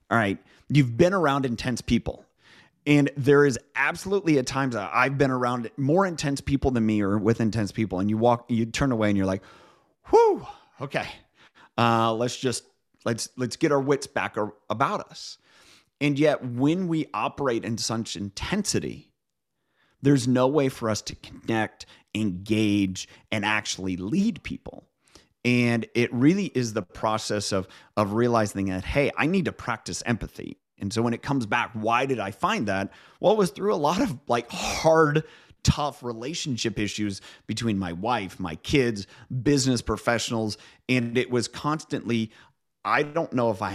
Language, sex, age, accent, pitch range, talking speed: English, male, 30-49, American, 105-140 Hz, 165 wpm